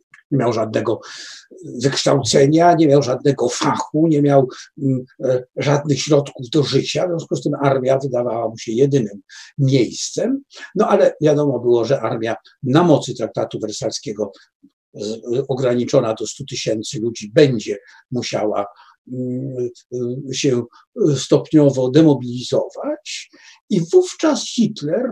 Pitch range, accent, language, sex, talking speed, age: 125-175 Hz, native, Polish, male, 110 wpm, 50-69